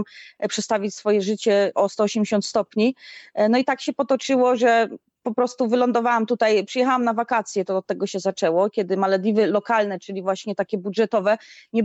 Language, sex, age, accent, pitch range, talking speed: Polish, female, 30-49, native, 195-225 Hz, 160 wpm